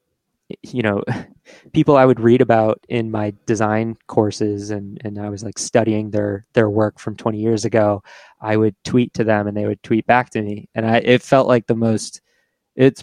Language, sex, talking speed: English, male, 205 wpm